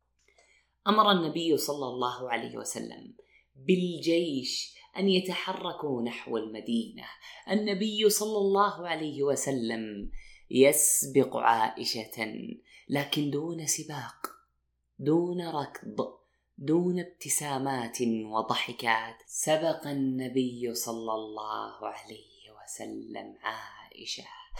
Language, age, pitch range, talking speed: Arabic, 20-39, 120-180 Hz, 80 wpm